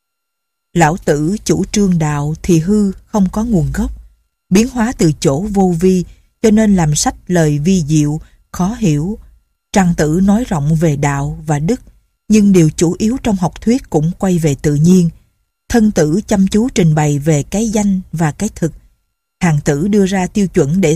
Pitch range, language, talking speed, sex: 160-205 Hz, Vietnamese, 185 wpm, female